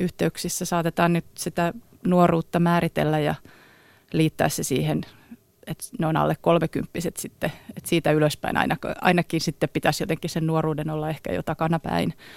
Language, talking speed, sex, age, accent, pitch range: Finnish, 140 wpm, female, 30-49, native, 155-170 Hz